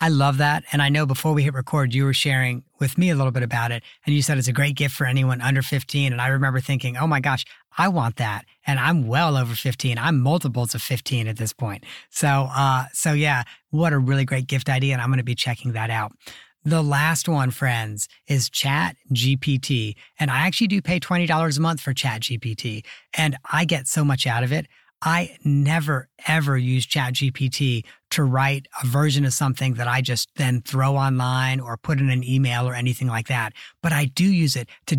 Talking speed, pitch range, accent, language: 225 wpm, 130-155 Hz, American, English